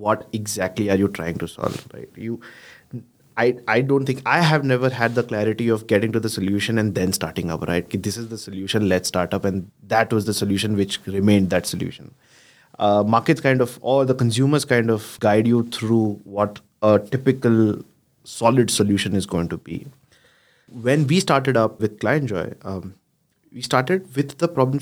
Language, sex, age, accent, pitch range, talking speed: English, male, 20-39, Indian, 105-130 Hz, 190 wpm